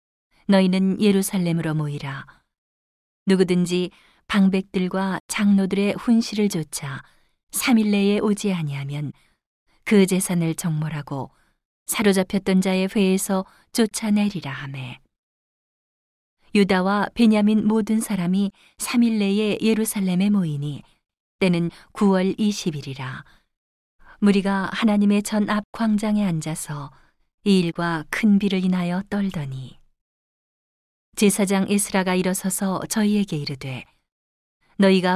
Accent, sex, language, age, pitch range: native, female, Korean, 40-59, 165-205 Hz